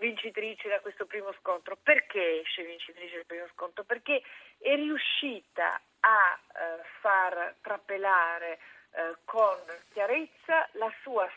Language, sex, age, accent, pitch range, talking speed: Italian, female, 40-59, native, 185-250 Hz, 120 wpm